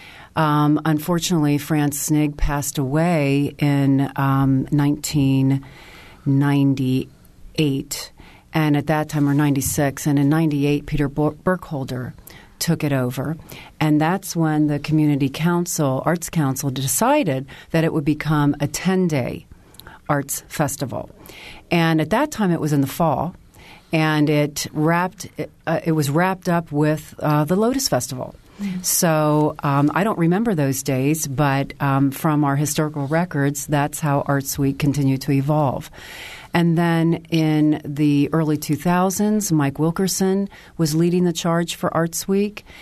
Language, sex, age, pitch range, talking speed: English, female, 40-59, 140-165 Hz, 135 wpm